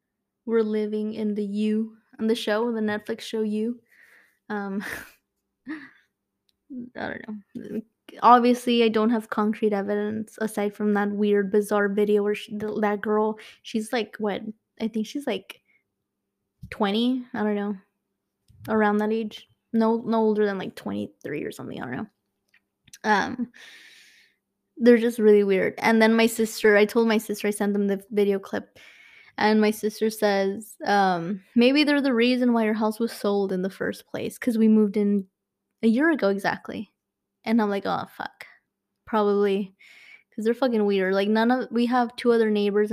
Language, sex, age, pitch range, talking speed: English, female, 20-39, 205-230 Hz, 170 wpm